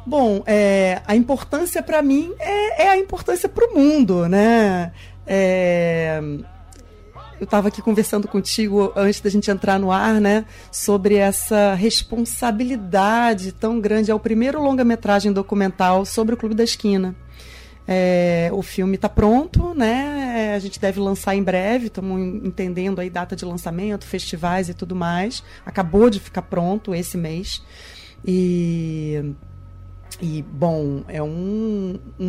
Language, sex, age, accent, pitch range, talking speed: Portuguese, female, 30-49, Brazilian, 180-220 Hz, 140 wpm